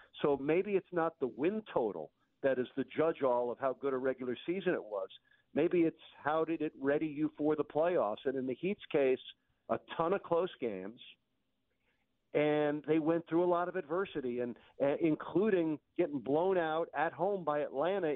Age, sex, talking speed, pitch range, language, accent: 50-69, male, 190 wpm, 130-170 Hz, English, American